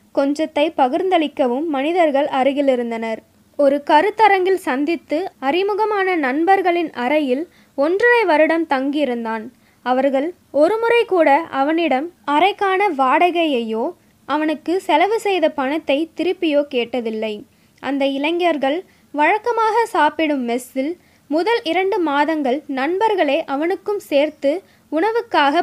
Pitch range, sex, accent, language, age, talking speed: 265-345 Hz, female, native, Tamil, 20-39, 85 wpm